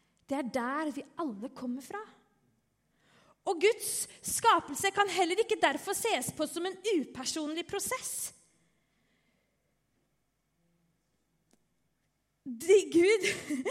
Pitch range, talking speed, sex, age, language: 260-365 Hz, 90 wpm, female, 30-49, English